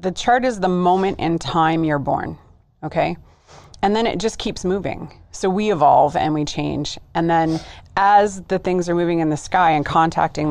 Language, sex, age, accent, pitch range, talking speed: English, female, 30-49, American, 145-185 Hz, 195 wpm